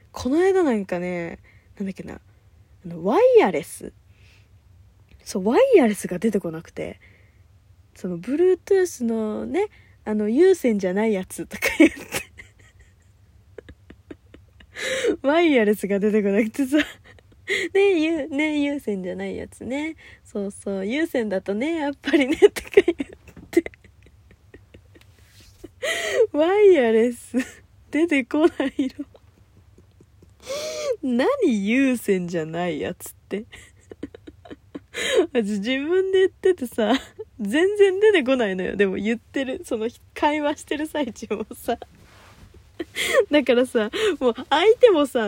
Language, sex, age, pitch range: Japanese, female, 20-39, 190-315 Hz